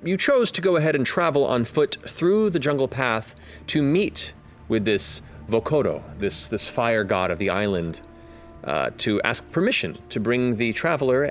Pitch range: 100-125 Hz